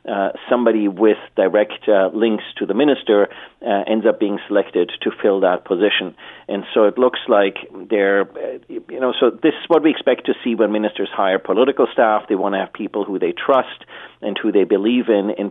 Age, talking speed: 40-59, 210 wpm